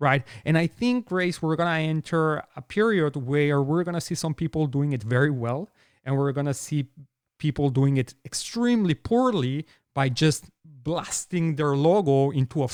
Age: 30-49